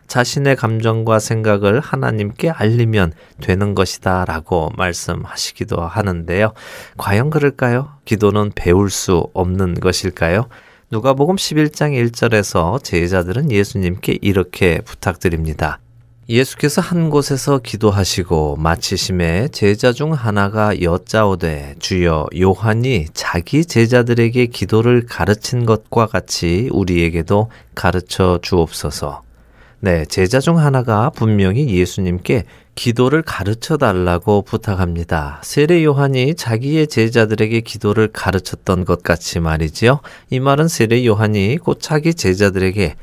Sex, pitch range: male, 90-125 Hz